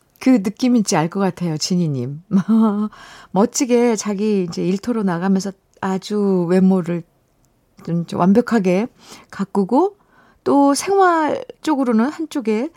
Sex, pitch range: female, 185-250 Hz